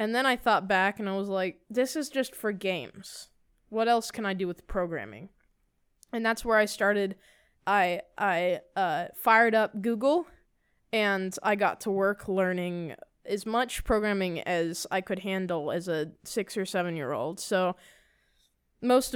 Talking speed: 170 wpm